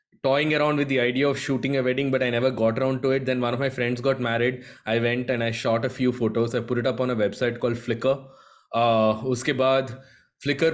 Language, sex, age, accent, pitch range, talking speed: Hindi, male, 20-39, native, 120-150 Hz, 250 wpm